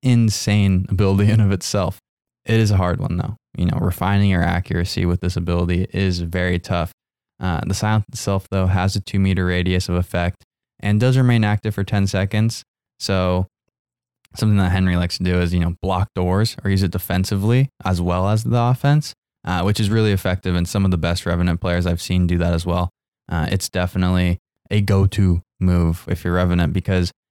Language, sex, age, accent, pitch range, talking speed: English, male, 20-39, American, 90-105 Hz, 200 wpm